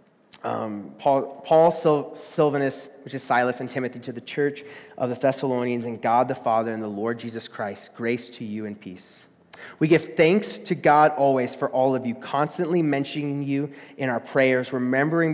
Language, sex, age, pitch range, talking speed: English, male, 30-49, 125-165 Hz, 185 wpm